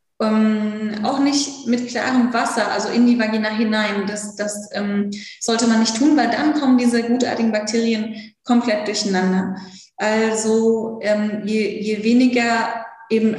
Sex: female